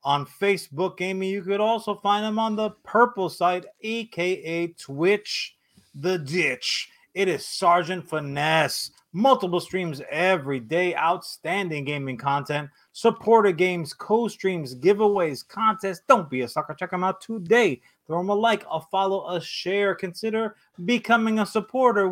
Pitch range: 160-205 Hz